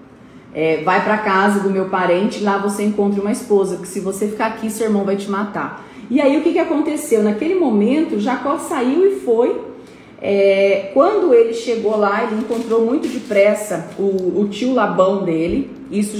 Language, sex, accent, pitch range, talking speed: Portuguese, female, Brazilian, 200-250 Hz, 180 wpm